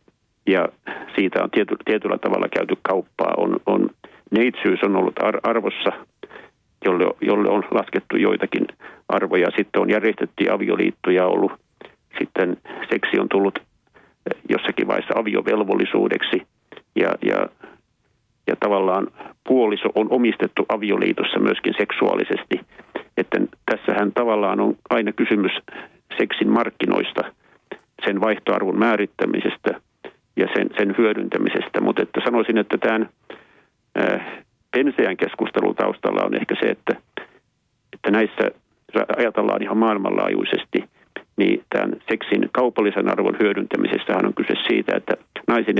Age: 50-69